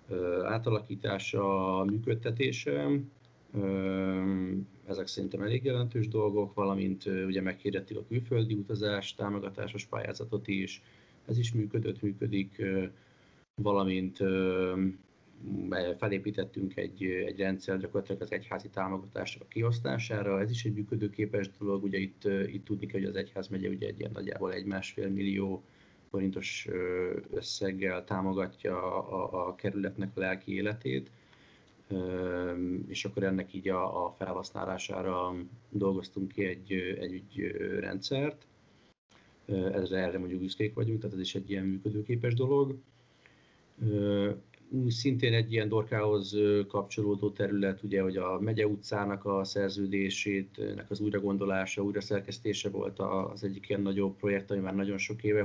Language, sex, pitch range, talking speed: Hungarian, male, 95-110 Hz, 120 wpm